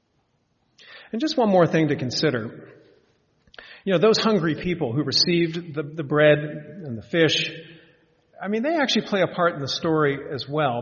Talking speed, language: 175 wpm, English